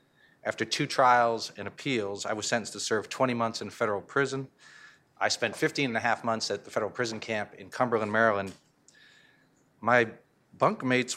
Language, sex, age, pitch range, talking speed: English, male, 40-59, 100-125 Hz, 170 wpm